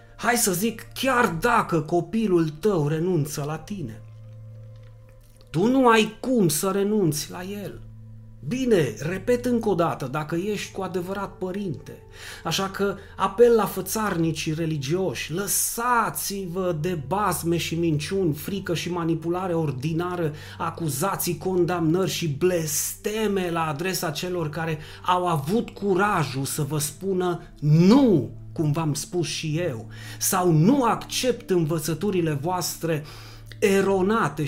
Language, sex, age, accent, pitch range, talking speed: Romanian, male, 30-49, native, 150-195 Hz, 120 wpm